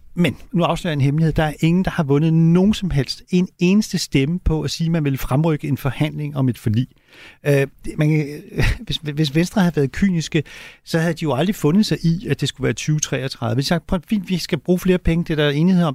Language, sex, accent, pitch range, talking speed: Danish, male, native, 135-170 Hz, 240 wpm